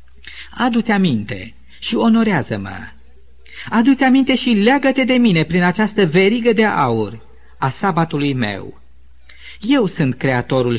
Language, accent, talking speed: Romanian, native, 120 wpm